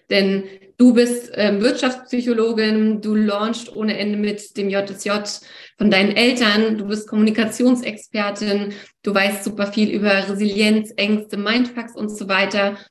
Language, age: German, 20-39